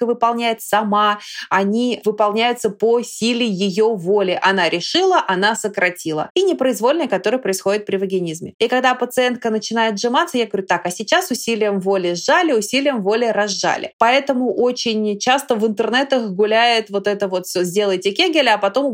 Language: Russian